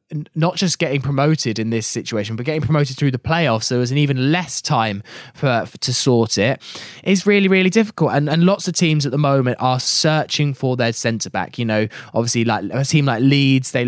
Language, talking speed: English, 220 wpm